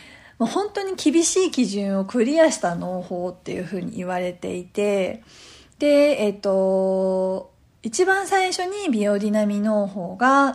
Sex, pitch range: female, 185-290 Hz